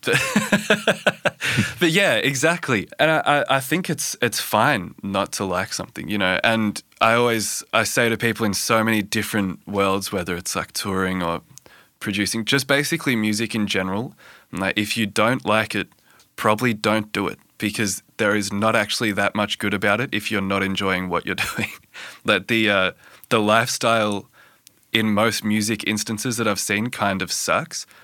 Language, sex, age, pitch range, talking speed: English, male, 20-39, 95-110 Hz, 170 wpm